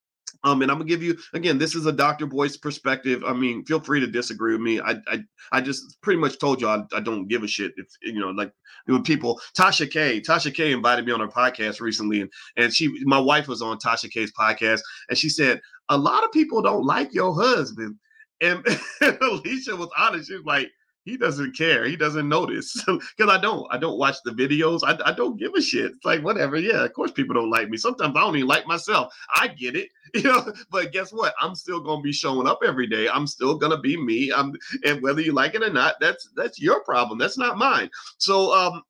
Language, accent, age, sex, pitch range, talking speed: English, American, 30-49, male, 115-170 Hz, 240 wpm